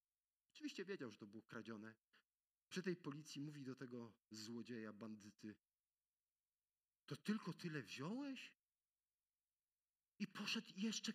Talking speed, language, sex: 120 wpm, Polish, male